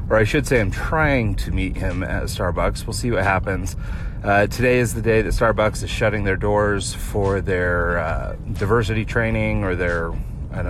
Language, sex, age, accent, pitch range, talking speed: English, male, 30-49, American, 95-115 Hz, 195 wpm